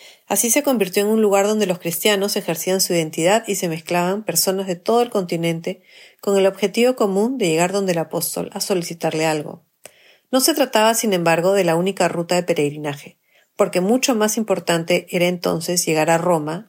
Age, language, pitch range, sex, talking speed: 40-59, Spanish, 170-215 Hz, female, 185 wpm